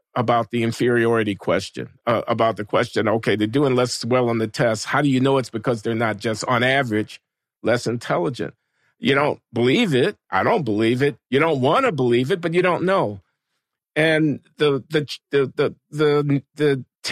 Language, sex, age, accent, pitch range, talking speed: English, male, 50-69, American, 125-170 Hz, 190 wpm